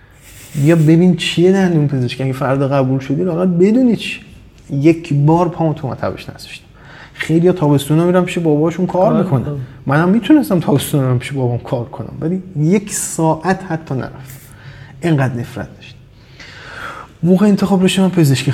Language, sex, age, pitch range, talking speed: Persian, male, 30-49, 130-165 Hz, 150 wpm